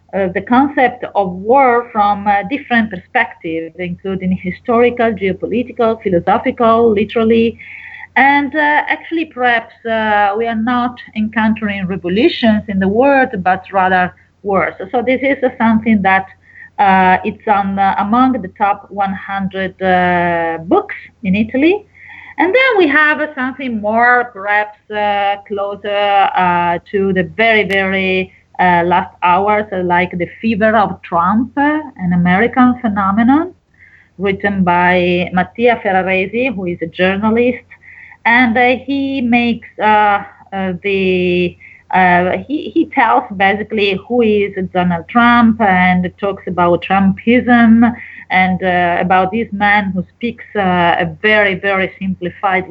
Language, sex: English, female